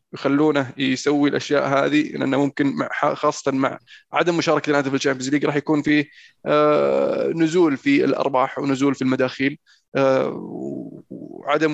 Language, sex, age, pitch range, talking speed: Arabic, male, 20-39, 140-160 Hz, 130 wpm